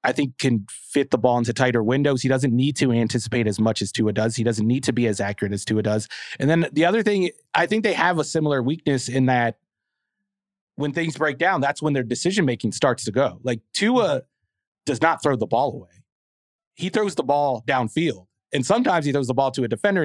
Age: 30-49